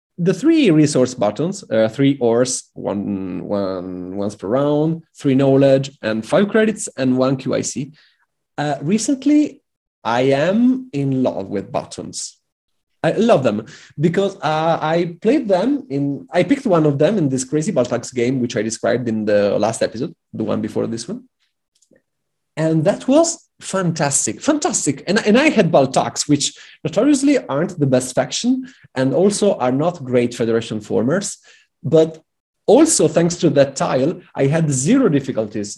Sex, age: male, 30-49